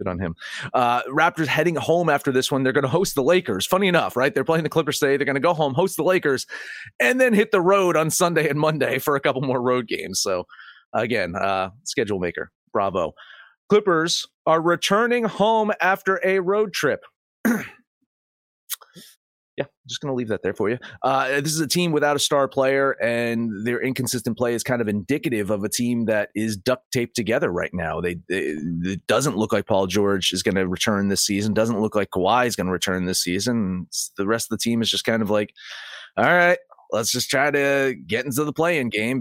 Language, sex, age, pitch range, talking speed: English, male, 30-49, 105-145 Hz, 215 wpm